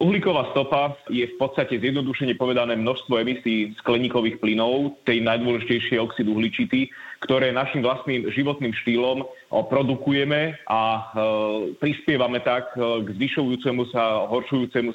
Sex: male